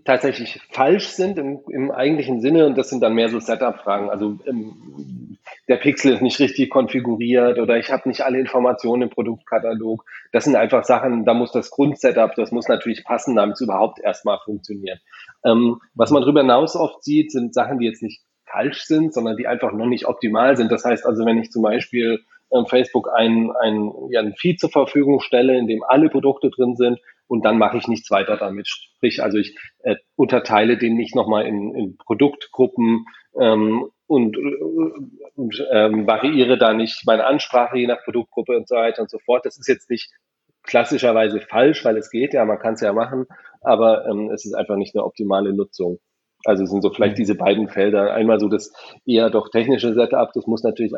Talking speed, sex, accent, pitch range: 195 wpm, male, German, 110-130 Hz